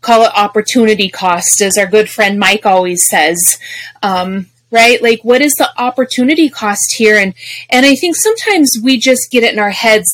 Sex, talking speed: female, 190 wpm